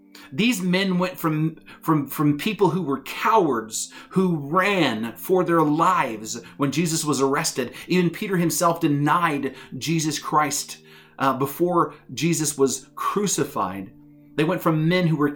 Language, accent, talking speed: English, American, 140 wpm